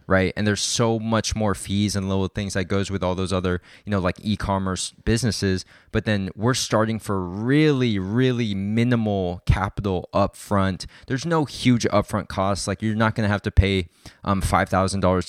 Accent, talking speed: American, 185 wpm